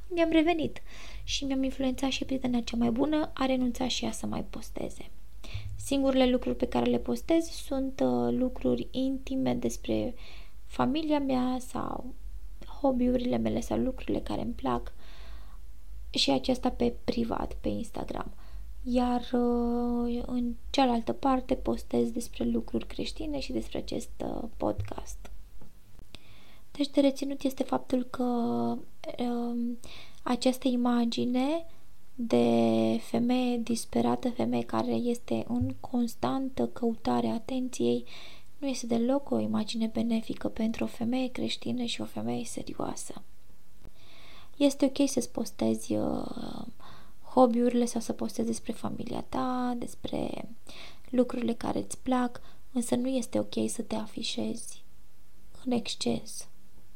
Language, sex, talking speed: Romanian, female, 125 wpm